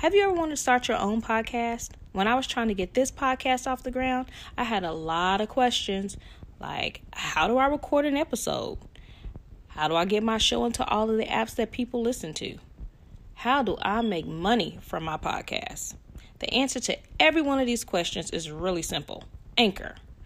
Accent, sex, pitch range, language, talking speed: American, female, 195-255 Hz, English, 200 wpm